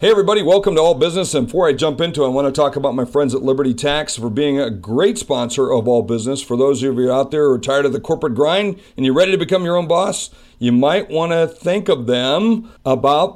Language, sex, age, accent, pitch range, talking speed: English, male, 50-69, American, 140-190 Hz, 265 wpm